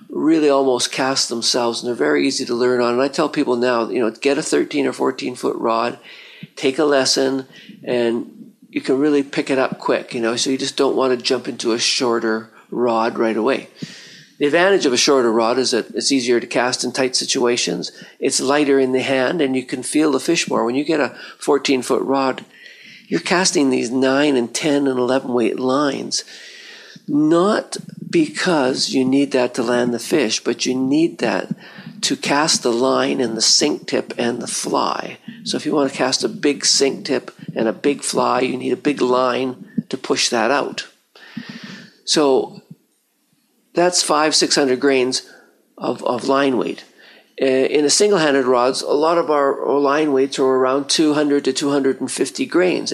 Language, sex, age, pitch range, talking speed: English, male, 50-69, 125-150 Hz, 190 wpm